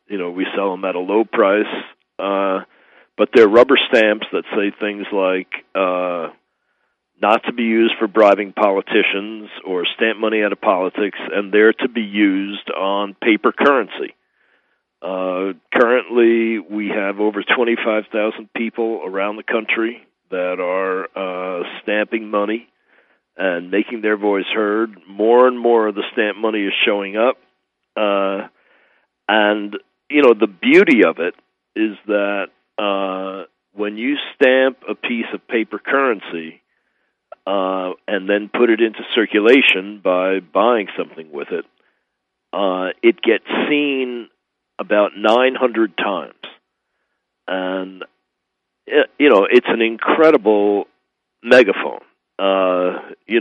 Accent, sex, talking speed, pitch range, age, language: American, male, 125 wpm, 95-115 Hz, 50-69, English